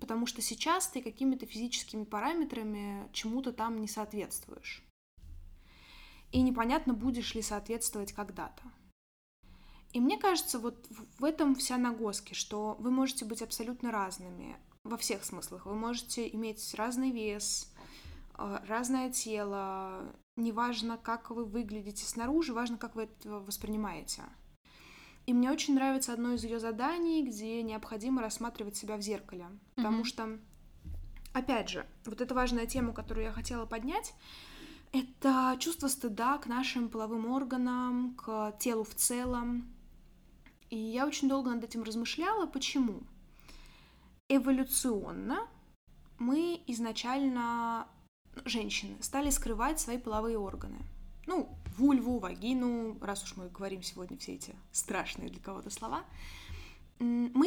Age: 10-29